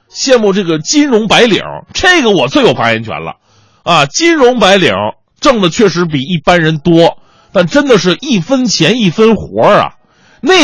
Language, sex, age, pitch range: Chinese, male, 30-49, 130-225 Hz